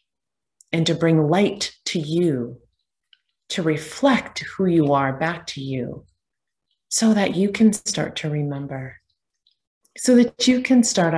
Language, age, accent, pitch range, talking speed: English, 30-49, American, 140-225 Hz, 140 wpm